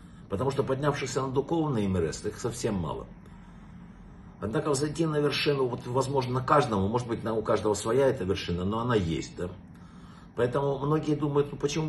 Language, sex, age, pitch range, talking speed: Russian, male, 50-69, 105-150 Hz, 165 wpm